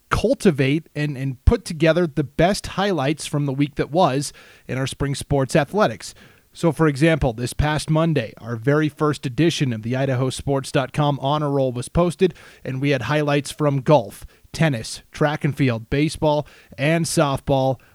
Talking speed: 160 wpm